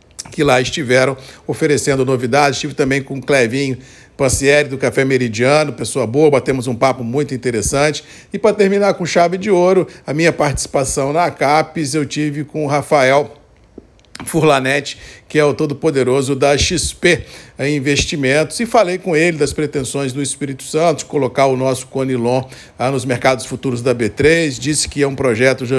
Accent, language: Brazilian, Portuguese